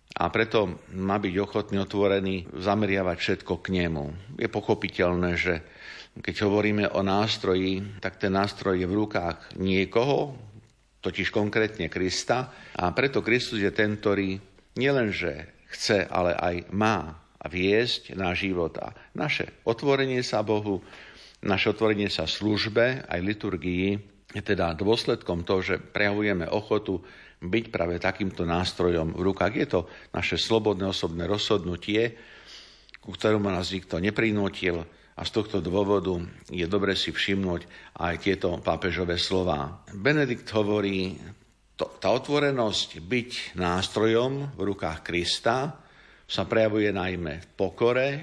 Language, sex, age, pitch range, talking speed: Slovak, male, 50-69, 90-110 Hz, 125 wpm